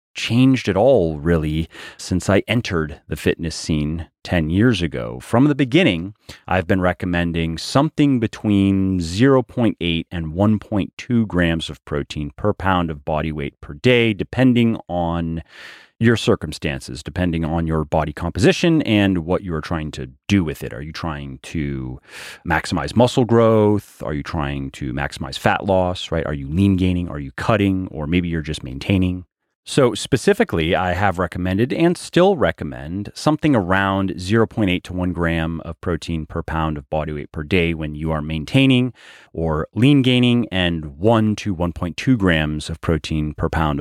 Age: 30-49